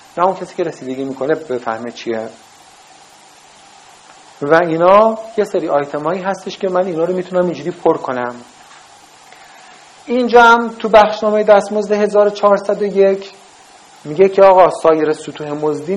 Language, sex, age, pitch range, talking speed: Persian, male, 40-59, 155-210 Hz, 130 wpm